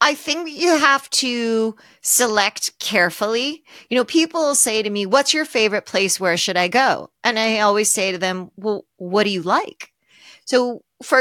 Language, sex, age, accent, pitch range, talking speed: English, female, 40-59, American, 195-265 Hz, 180 wpm